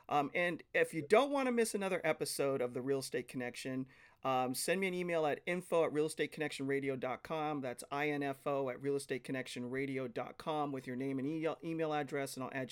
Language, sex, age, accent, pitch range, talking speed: English, male, 40-59, American, 135-170 Hz, 180 wpm